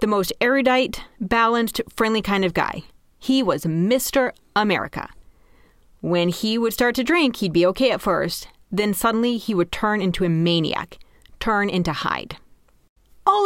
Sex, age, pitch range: female, 30-49, 175-235 Hz